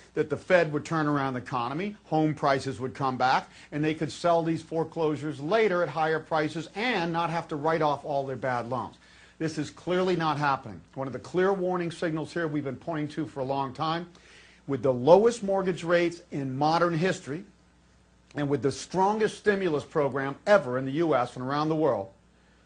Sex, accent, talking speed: male, American, 200 wpm